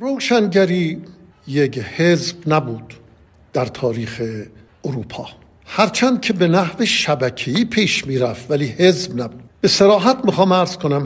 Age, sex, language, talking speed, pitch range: 50-69, male, Persian, 120 wpm, 135-200 Hz